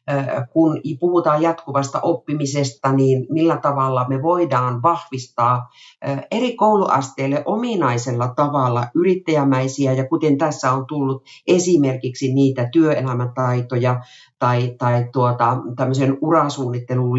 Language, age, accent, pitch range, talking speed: Finnish, 50-69, native, 130-165 Hz, 100 wpm